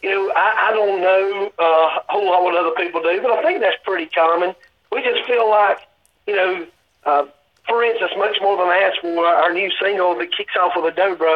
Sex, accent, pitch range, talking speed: male, American, 170-205 Hz, 225 wpm